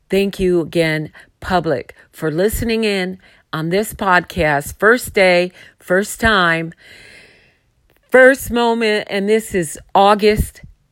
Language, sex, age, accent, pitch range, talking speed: English, female, 40-59, American, 140-180 Hz, 110 wpm